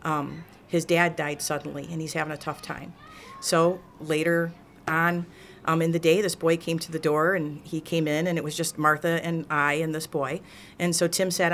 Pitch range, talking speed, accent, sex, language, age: 160-180 Hz, 220 wpm, American, female, English, 50-69